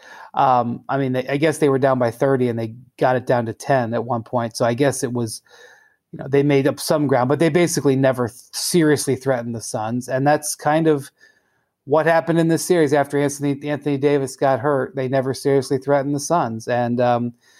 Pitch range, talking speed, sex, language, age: 130-150 Hz, 220 wpm, male, English, 30-49